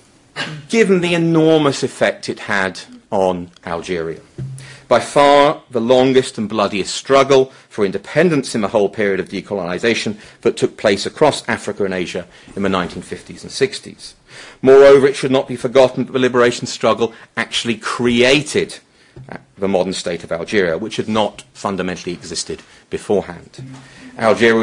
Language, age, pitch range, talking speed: English, 40-59, 100-140 Hz, 145 wpm